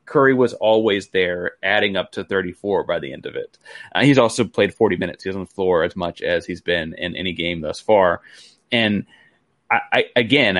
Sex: male